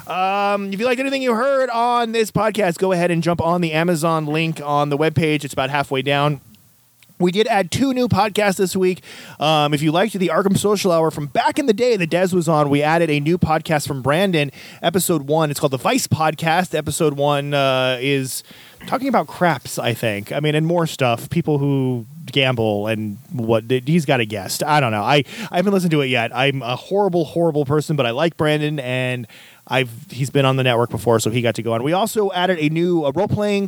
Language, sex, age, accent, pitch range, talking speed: English, male, 30-49, American, 130-180 Hz, 225 wpm